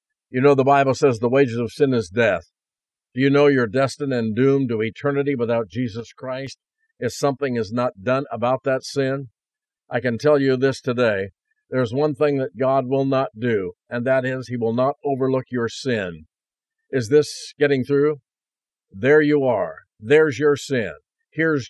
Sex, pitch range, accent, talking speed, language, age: male, 130-155 Hz, American, 180 wpm, English, 50-69